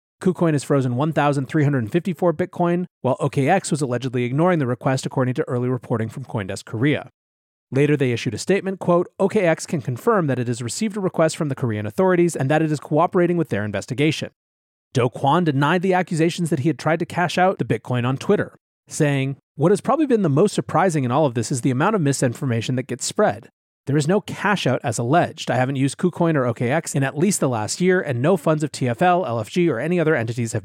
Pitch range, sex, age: 125-175 Hz, male, 30-49